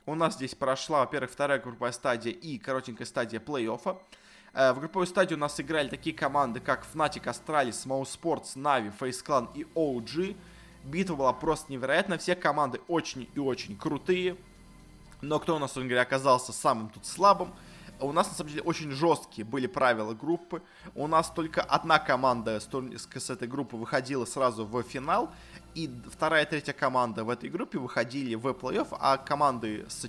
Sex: male